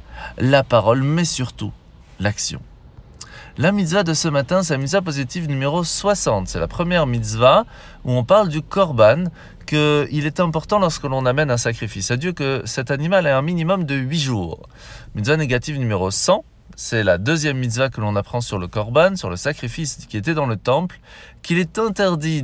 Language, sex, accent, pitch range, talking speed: French, male, French, 120-170 Hz, 185 wpm